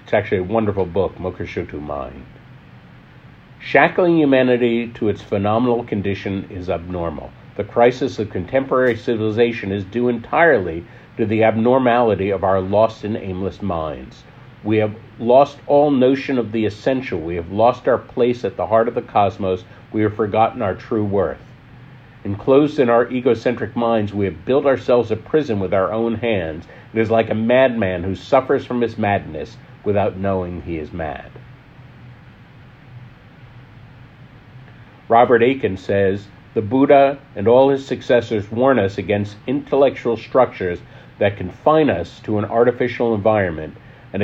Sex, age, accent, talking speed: male, 50-69, American, 150 wpm